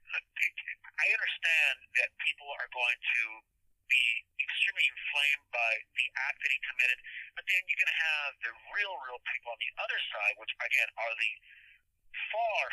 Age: 50-69